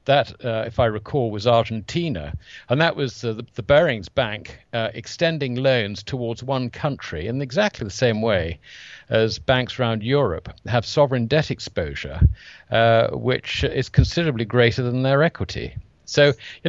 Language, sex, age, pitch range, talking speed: English, male, 50-69, 105-140 Hz, 155 wpm